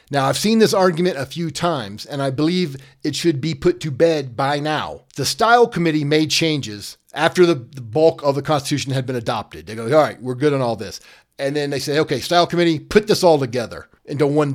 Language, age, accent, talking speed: English, 40-59, American, 230 wpm